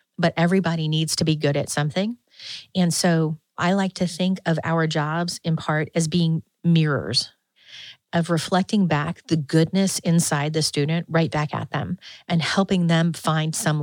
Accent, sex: American, female